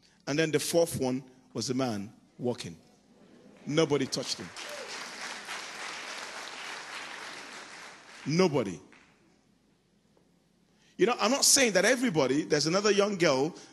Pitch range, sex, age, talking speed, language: 135-205 Hz, male, 40-59, 105 wpm, English